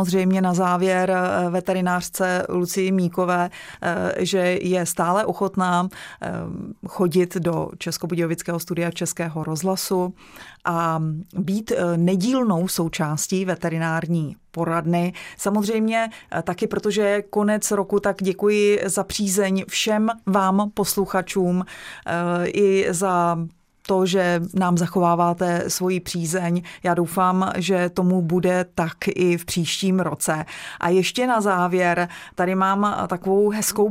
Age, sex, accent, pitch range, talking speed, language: 30-49, female, native, 175-195 Hz, 110 wpm, Czech